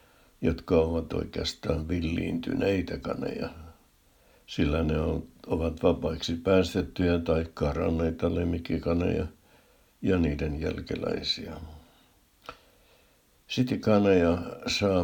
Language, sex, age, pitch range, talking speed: Finnish, male, 60-79, 80-95 Hz, 70 wpm